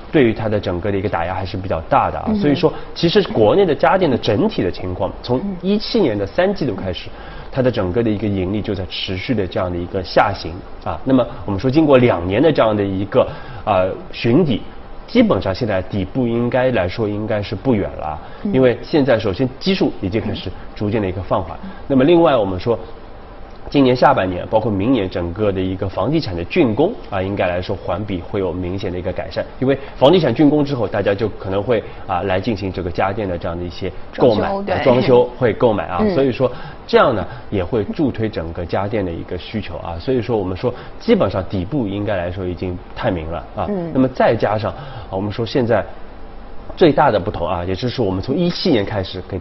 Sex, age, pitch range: male, 20-39, 95-125 Hz